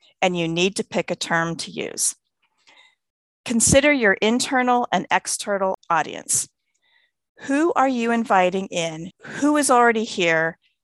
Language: English